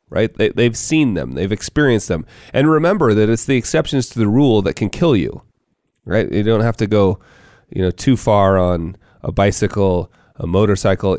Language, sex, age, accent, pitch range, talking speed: English, male, 30-49, American, 95-125 Hz, 195 wpm